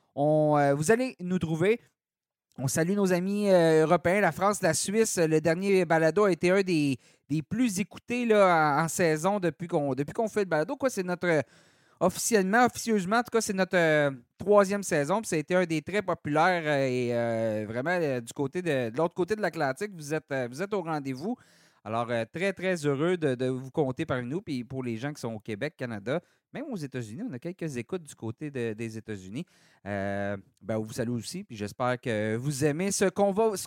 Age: 30-49